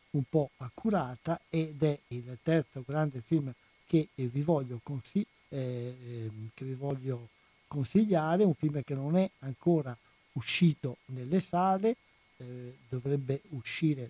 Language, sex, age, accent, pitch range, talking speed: Italian, male, 60-79, native, 130-160 Hz, 100 wpm